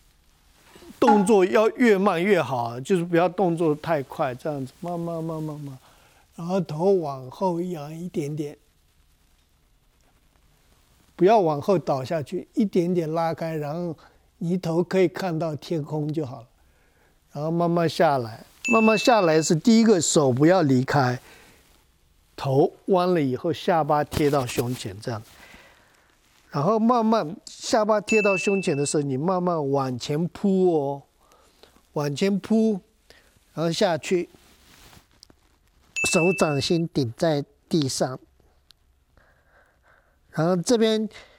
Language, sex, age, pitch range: Chinese, male, 50-69, 140-190 Hz